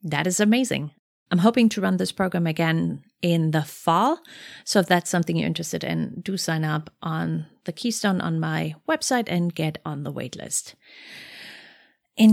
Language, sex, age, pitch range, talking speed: English, female, 30-49, 155-195 Hz, 175 wpm